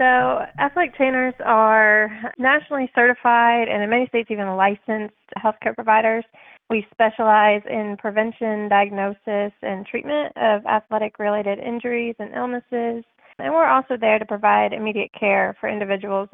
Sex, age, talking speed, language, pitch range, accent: female, 20-39, 130 wpm, English, 200-235 Hz, American